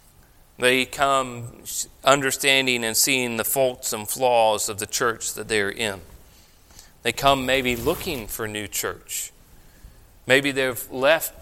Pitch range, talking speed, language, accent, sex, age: 105-150 Hz, 135 wpm, English, American, male, 40-59